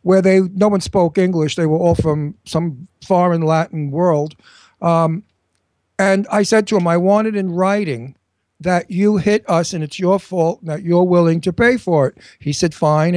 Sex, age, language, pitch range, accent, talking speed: male, 60-79, English, 155-205 Hz, American, 190 wpm